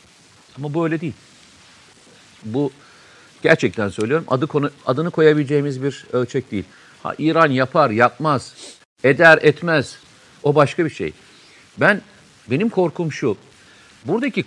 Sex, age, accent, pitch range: male, 50-69, native, 135-185 Hz